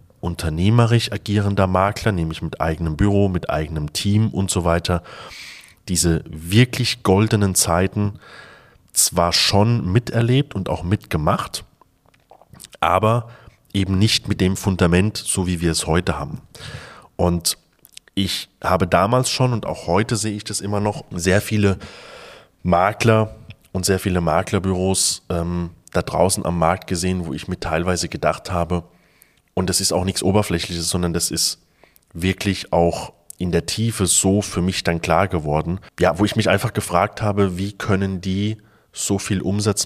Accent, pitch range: German, 90-105 Hz